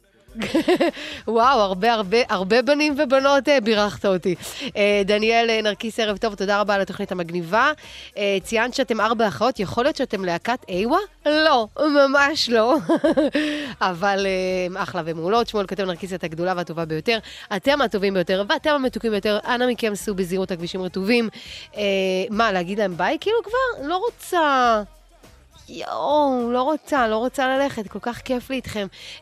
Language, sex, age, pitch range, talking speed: English, female, 30-49, 210-280 Hz, 150 wpm